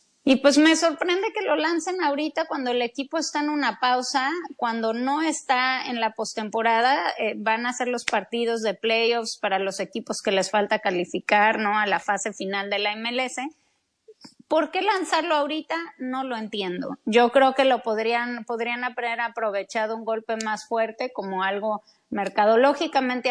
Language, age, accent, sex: English, 30-49, Mexican, female